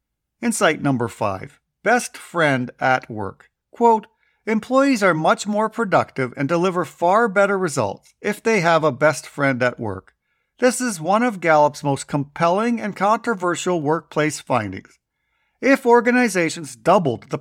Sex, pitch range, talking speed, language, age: male, 145-215 Hz, 140 wpm, English, 50-69